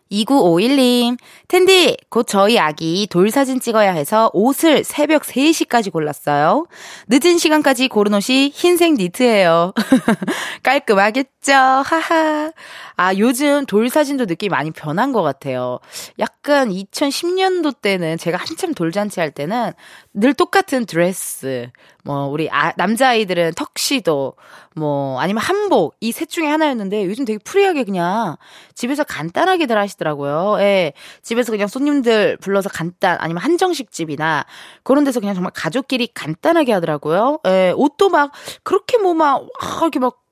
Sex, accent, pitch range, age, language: female, native, 190-295 Hz, 20-39, Korean